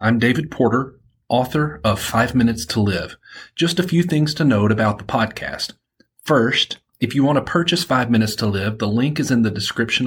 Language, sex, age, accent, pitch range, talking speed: English, male, 40-59, American, 110-135 Hz, 205 wpm